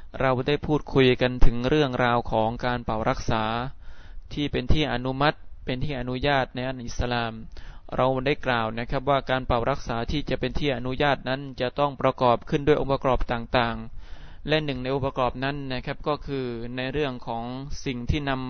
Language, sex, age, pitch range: Thai, male, 20-39, 120-140 Hz